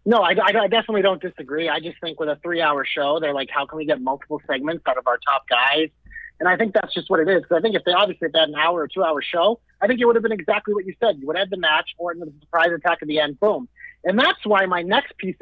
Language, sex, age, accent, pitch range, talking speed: English, male, 30-49, American, 165-225 Hz, 305 wpm